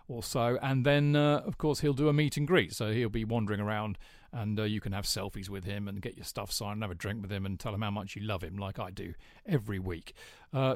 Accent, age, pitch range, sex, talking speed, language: British, 40-59, 115-150 Hz, male, 285 wpm, English